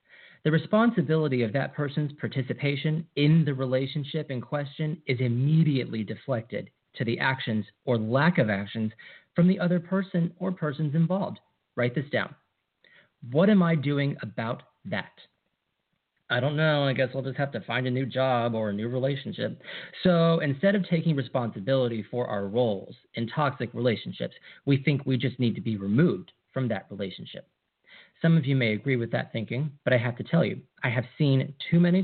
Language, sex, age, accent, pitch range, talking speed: English, male, 40-59, American, 125-165 Hz, 180 wpm